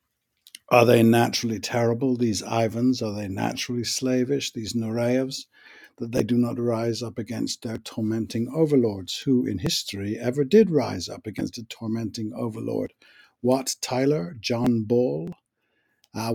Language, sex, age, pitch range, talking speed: English, male, 60-79, 110-135 Hz, 140 wpm